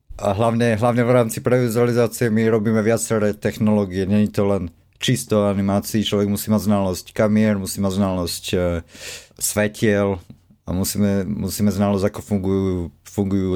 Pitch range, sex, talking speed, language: 100-115 Hz, male, 140 wpm, Slovak